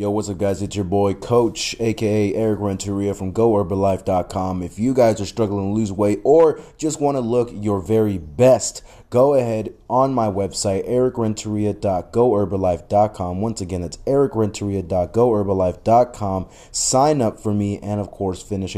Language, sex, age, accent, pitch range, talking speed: English, male, 30-49, American, 95-115 Hz, 150 wpm